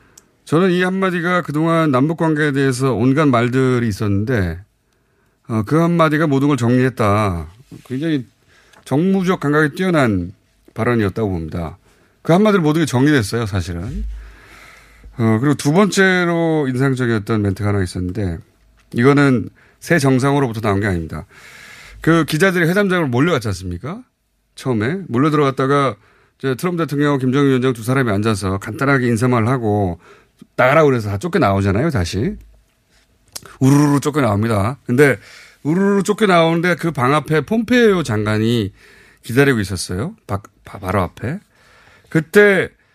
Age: 30-49